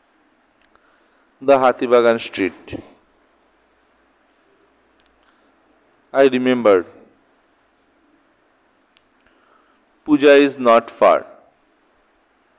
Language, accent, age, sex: Bengali, native, 50-69, male